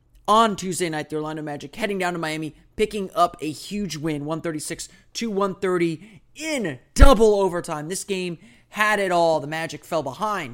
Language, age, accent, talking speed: English, 30-49, American, 160 wpm